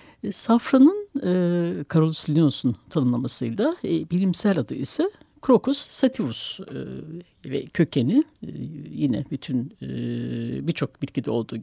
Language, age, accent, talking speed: Turkish, 60-79, native, 110 wpm